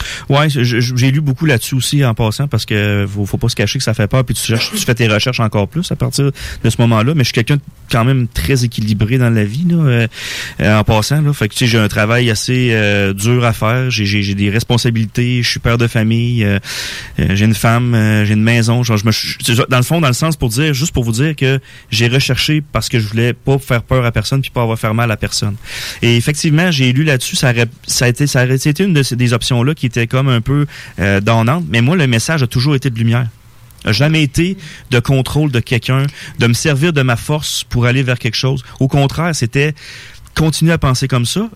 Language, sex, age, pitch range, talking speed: French, male, 30-49, 115-145 Hz, 260 wpm